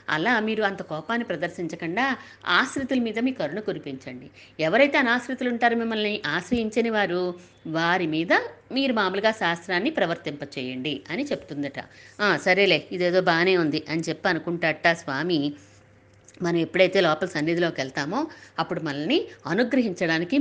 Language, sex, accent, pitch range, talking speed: Telugu, female, native, 160-220 Hz, 120 wpm